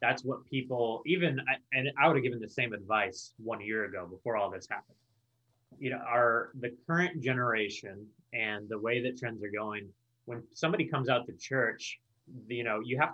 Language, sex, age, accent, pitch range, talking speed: English, male, 20-39, American, 110-130 Hz, 190 wpm